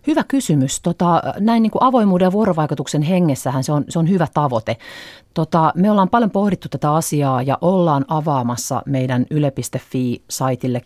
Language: Finnish